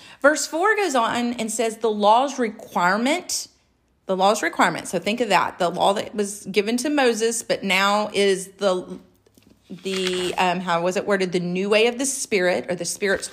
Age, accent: 40-59, American